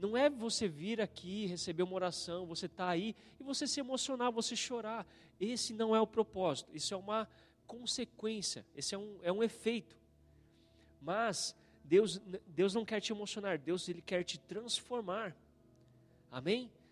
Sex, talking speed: male, 160 wpm